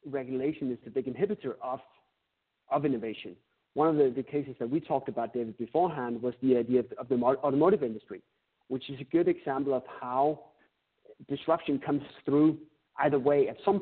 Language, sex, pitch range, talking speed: English, male, 125-145 Hz, 180 wpm